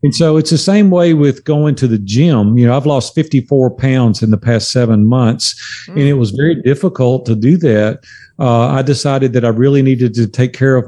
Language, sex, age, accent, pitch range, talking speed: English, male, 50-69, American, 120-150 Hz, 225 wpm